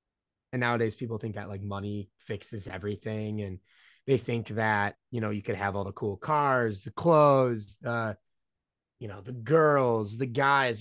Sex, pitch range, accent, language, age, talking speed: male, 105-140 Hz, American, English, 20-39, 165 wpm